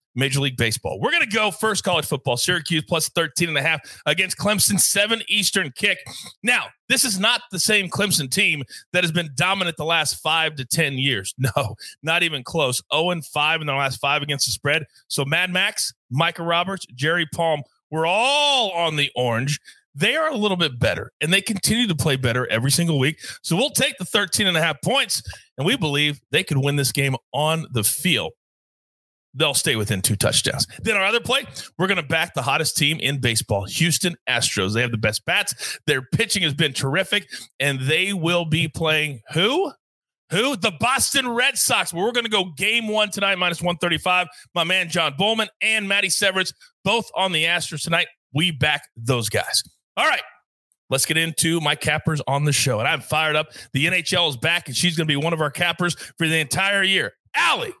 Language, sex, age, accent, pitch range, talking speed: English, male, 30-49, American, 140-190 Hz, 205 wpm